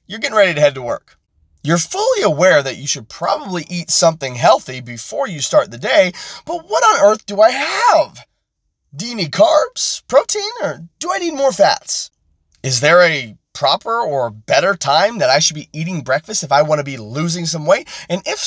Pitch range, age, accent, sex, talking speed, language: 125-180 Hz, 30-49, American, male, 205 wpm, English